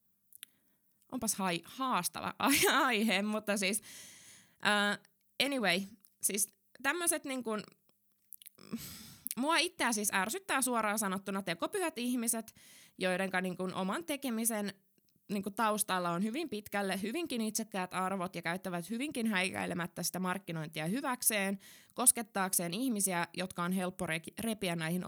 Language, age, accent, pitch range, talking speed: Finnish, 20-39, native, 180-235 Hz, 110 wpm